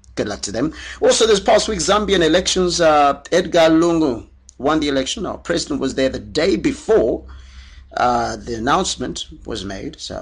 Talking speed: 170 wpm